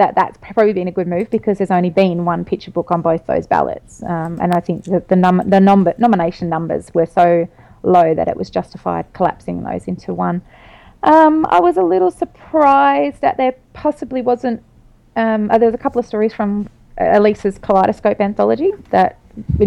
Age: 30-49